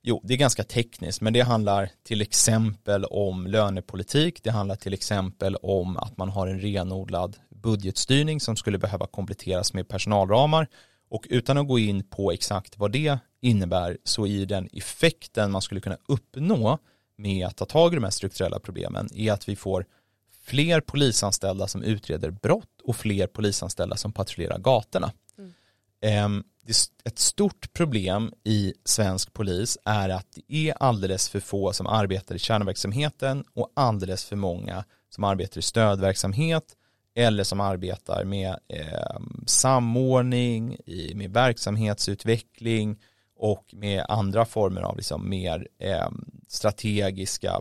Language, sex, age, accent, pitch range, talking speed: Swedish, male, 30-49, native, 95-115 Hz, 140 wpm